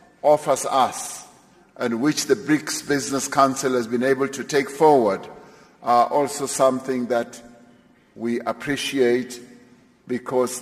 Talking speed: 120 wpm